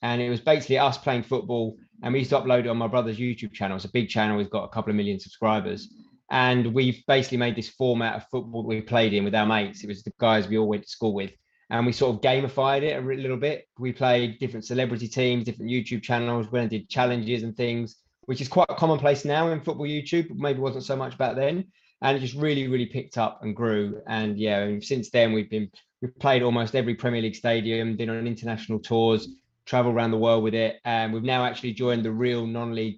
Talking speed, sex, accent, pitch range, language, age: 245 wpm, male, British, 110-130 Hz, English, 20-39